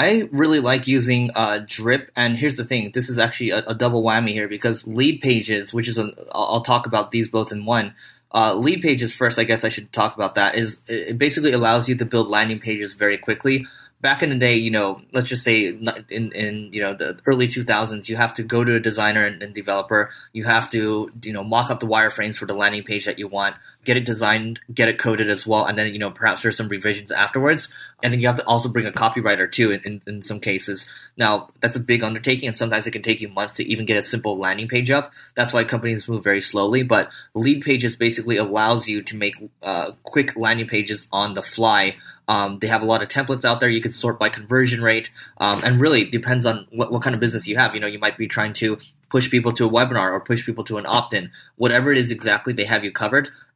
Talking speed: 250 wpm